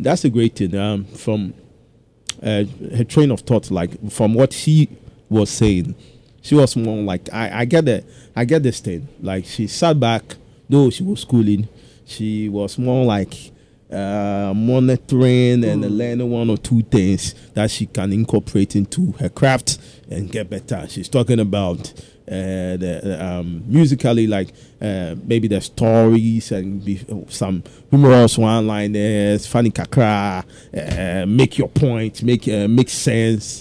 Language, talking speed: English, 155 wpm